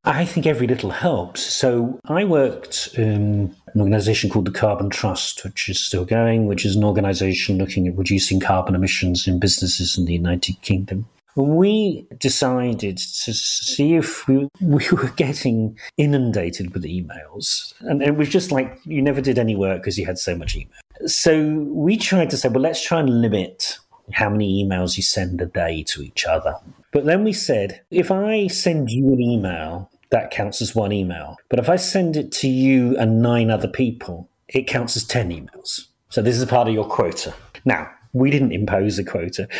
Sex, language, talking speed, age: male, English, 190 wpm, 40-59